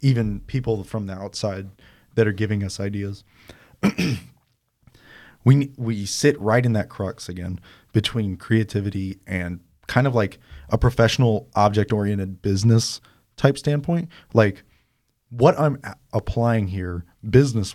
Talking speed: 125 wpm